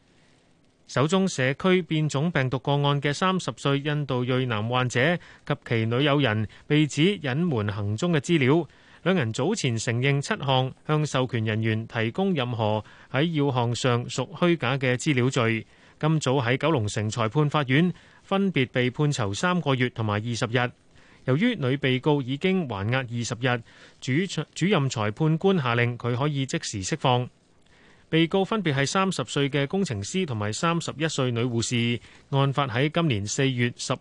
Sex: male